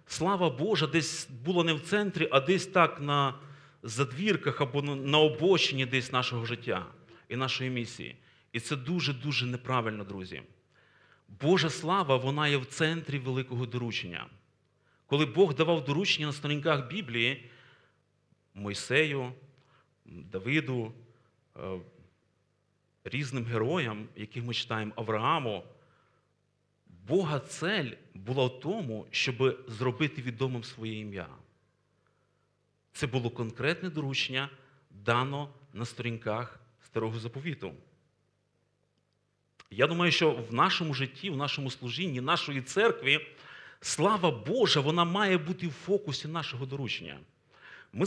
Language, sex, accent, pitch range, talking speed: Ukrainian, male, native, 120-160 Hz, 110 wpm